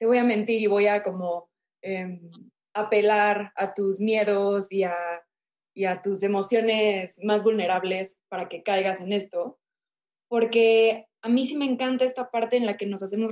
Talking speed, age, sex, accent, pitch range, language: 175 wpm, 20-39, female, Mexican, 200-230 Hz, Spanish